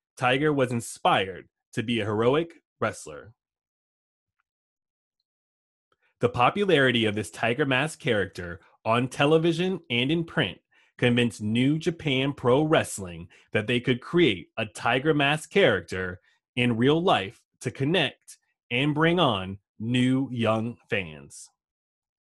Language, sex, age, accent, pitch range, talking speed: English, male, 20-39, American, 110-155 Hz, 120 wpm